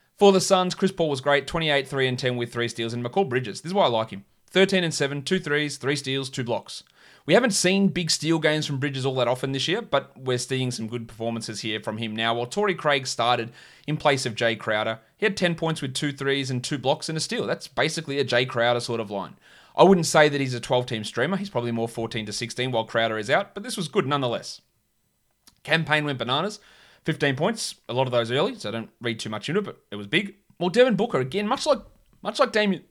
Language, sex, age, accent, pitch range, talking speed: English, male, 30-49, Australian, 115-165 Hz, 250 wpm